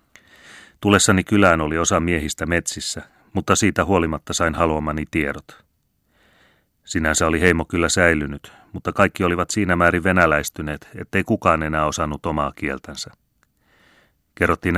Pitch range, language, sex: 80-90 Hz, Finnish, male